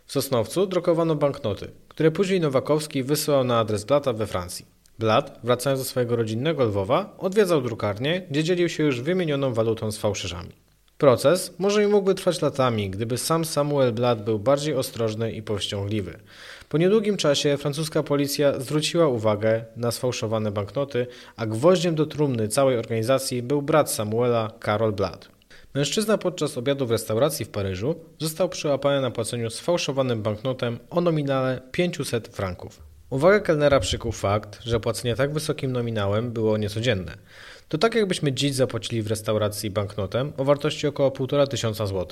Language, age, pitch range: Polish, 20-39, 110-155 Hz